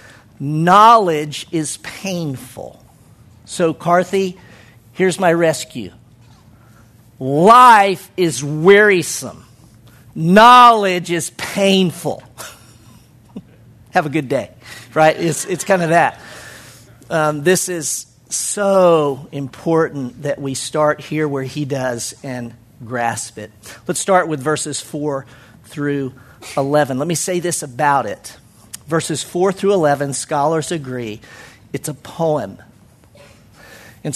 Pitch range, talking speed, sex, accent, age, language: 130-175 Hz, 110 wpm, male, American, 50-69, English